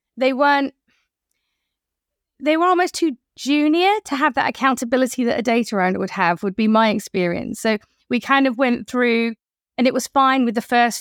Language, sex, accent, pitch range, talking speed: English, female, British, 210-250 Hz, 185 wpm